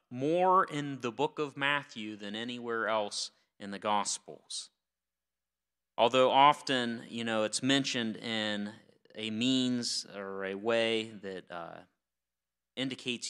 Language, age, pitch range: English, 30-49, 95-120 Hz